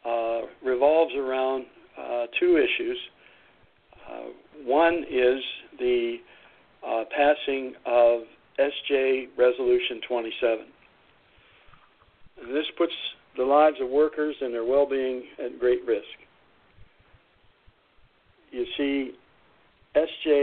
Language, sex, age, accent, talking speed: English, male, 60-79, American, 90 wpm